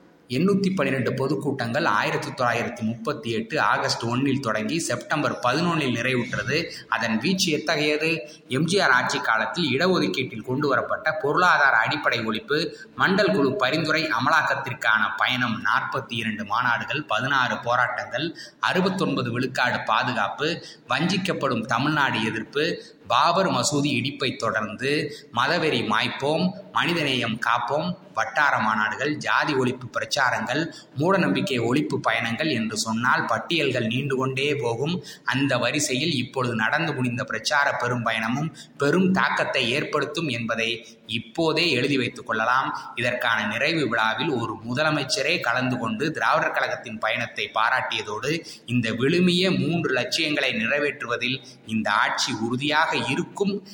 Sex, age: male, 20-39